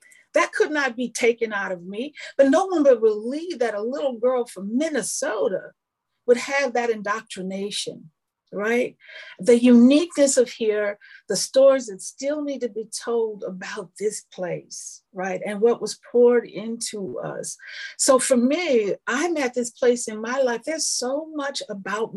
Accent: American